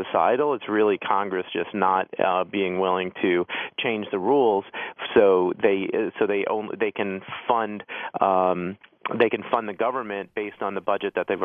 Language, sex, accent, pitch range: English, male, American, 100-115 Hz